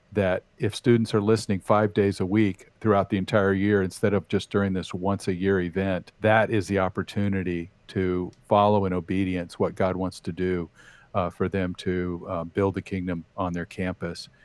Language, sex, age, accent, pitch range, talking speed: English, male, 50-69, American, 90-105 Hz, 190 wpm